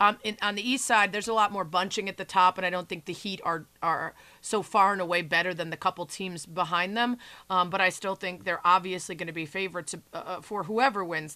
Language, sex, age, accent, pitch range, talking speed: English, female, 30-49, American, 175-210 Hz, 255 wpm